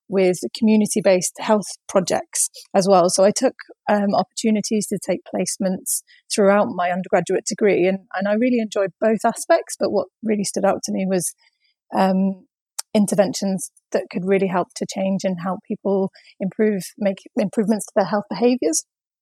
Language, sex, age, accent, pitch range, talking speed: English, female, 30-49, British, 185-220 Hz, 160 wpm